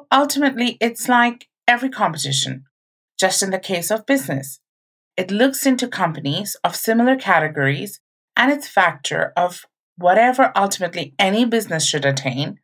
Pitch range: 175-240 Hz